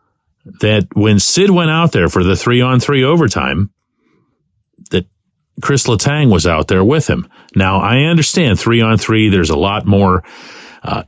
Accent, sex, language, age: American, male, English, 40-59